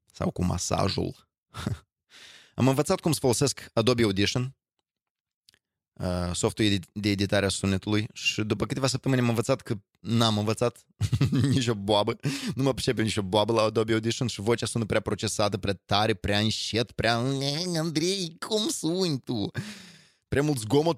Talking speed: 150 wpm